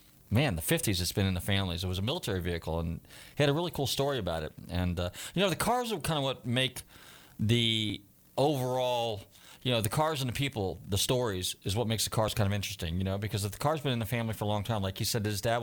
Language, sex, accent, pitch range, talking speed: English, male, American, 95-115 Hz, 275 wpm